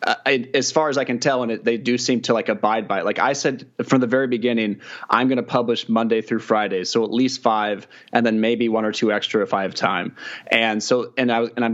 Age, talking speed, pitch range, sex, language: 30-49, 265 wpm, 110-130 Hz, male, English